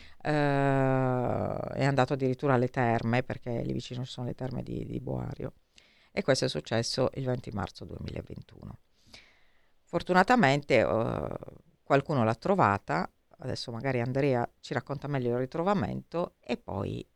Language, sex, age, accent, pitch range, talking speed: Italian, female, 50-69, native, 115-140 Hz, 135 wpm